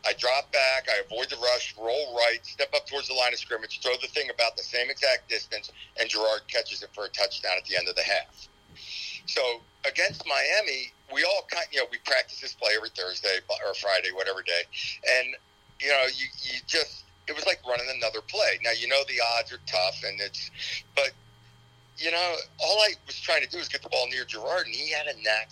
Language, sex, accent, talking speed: English, male, American, 230 wpm